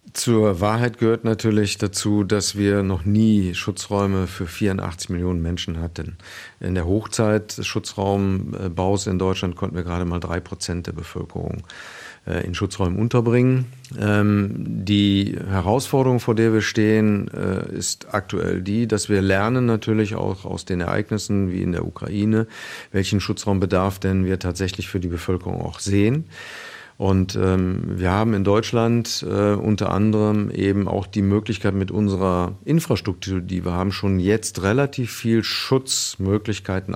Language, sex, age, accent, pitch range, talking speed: German, male, 50-69, German, 95-110 Hz, 145 wpm